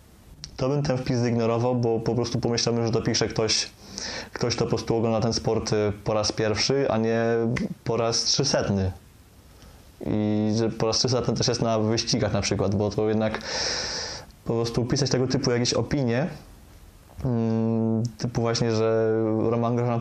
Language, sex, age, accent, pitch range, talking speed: Polish, male, 20-39, native, 110-125 Hz, 155 wpm